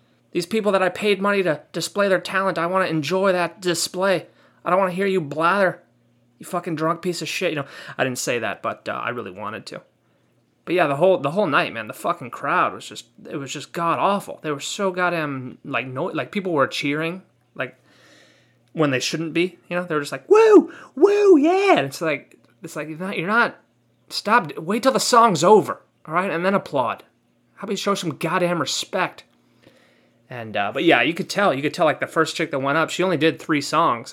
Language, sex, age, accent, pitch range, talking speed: English, male, 20-39, American, 130-180 Hz, 230 wpm